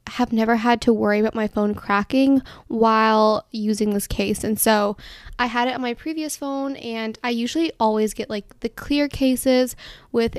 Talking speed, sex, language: 185 wpm, female, English